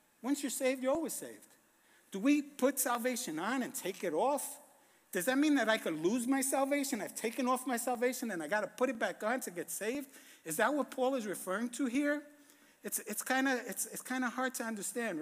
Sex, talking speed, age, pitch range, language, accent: male, 225 wpm, 60-79, 220-280 Hz, English, American